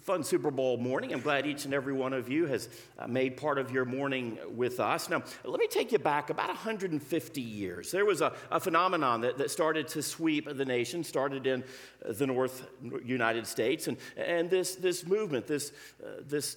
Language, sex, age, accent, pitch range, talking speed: English, male, 50-69, American, 130-180 Hz, 200 wpm